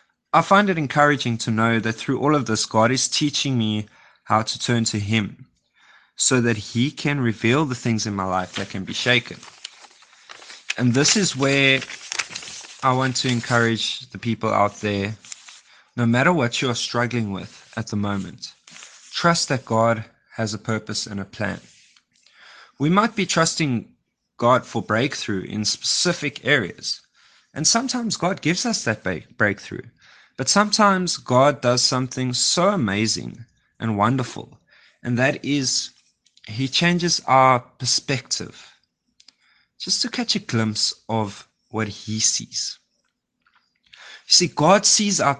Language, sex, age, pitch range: Swedish, male, 20-39, 110-150 Hz